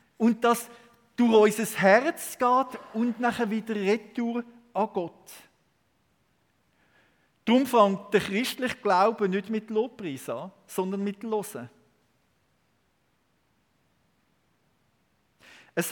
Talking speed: 95 wpm